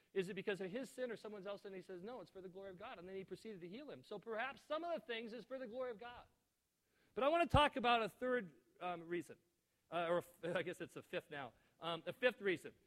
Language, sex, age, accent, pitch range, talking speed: English, male, 40-59, American, 165-205 Hz, 290 wpm